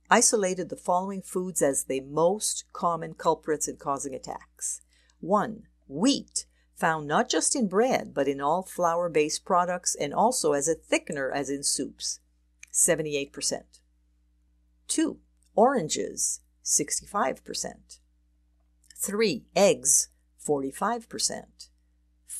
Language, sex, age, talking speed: English, female, 50-69, 105 wpm